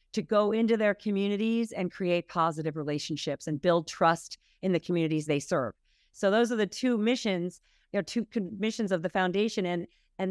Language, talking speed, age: English, 185 wpm, 40-59